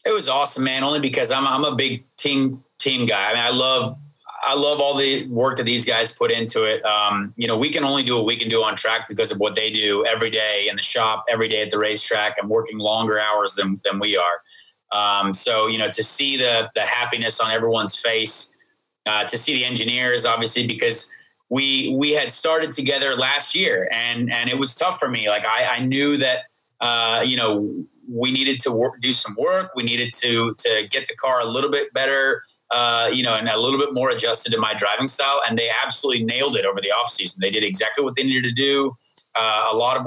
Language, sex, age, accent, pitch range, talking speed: English, male, 30-49, American, 115-140 Hz, 235 wpm